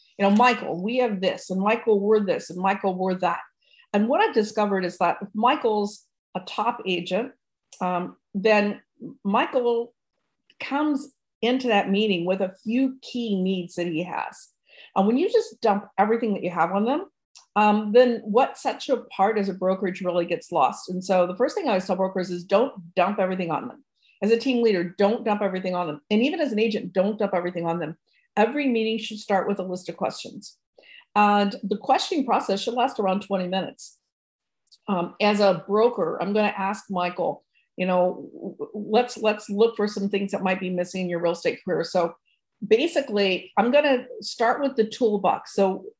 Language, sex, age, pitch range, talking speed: English, female, 50-69, 185-240 Hz, 195 wpm